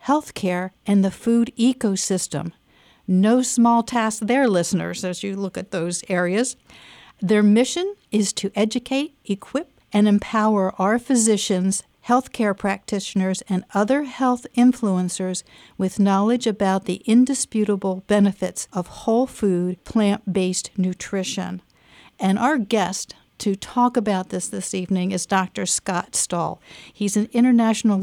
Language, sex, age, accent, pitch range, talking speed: English, female, 60-79, American, 190-230 Hz, 125 wpm